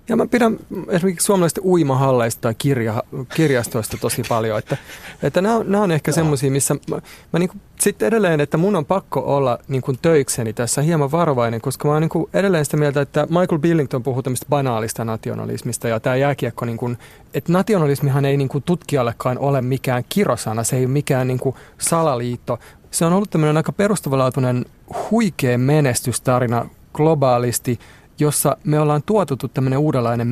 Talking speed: 165 wpm